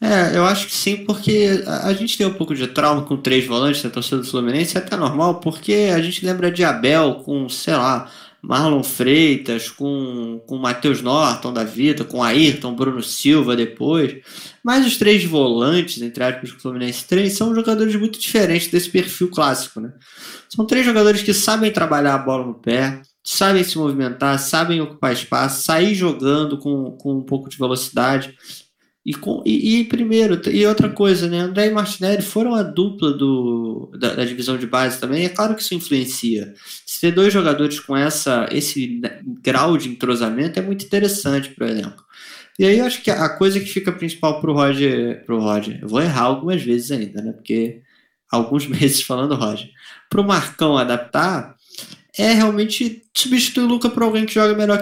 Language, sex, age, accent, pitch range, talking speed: Portuguese, male, 20-39, Brazilian, 130-200 Hz, 185 wpm